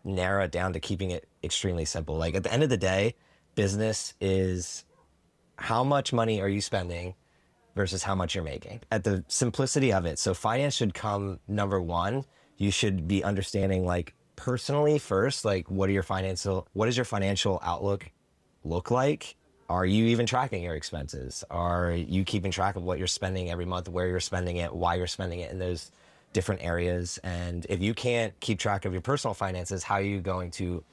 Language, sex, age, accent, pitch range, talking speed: English, male, 30-49, American, 90-105 Hz, 195 wpm